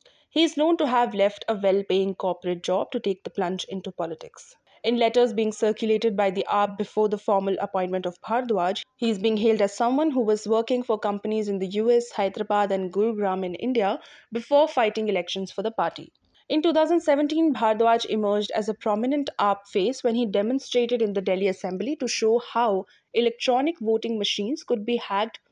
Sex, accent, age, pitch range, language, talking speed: female, Indian, 20-39, 200-250 Hz, English, 185 wpm